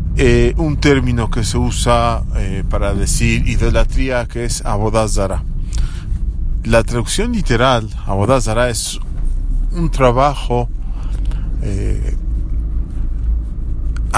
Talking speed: 90 wpm